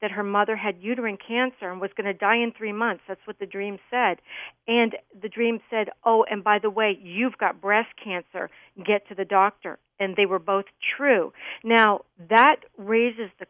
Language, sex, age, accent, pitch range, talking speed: English, female, 50-69, American, 205-250 Hz, 200 wpm